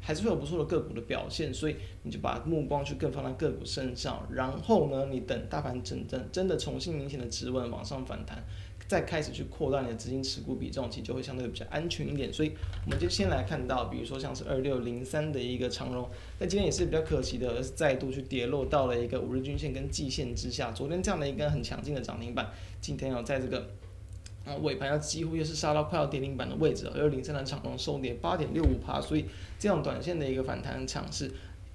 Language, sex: Chinese, male